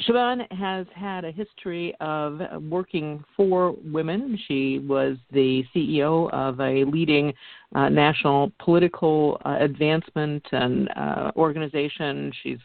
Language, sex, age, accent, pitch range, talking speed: English, female, 50-69, American, 135-170 Hz, 120 wpm